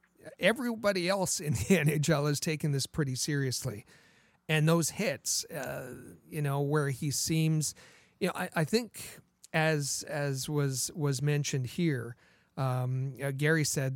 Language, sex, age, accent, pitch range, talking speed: English, male, 40-59, American, 135-165 Hz, 145 wpm